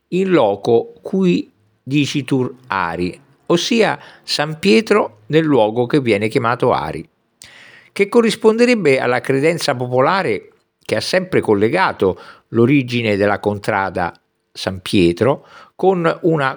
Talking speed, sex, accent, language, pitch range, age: 110 wpm, male, native, Italian, 115-165 Hz, 50-69